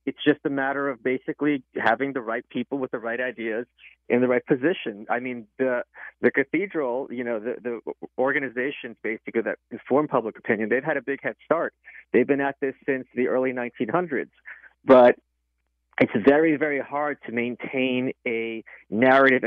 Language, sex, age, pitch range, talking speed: English, male, 40-59, 120-150 Hz, 175 wpm